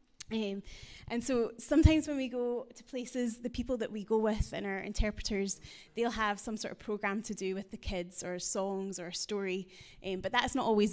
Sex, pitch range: female, 200-235 Hz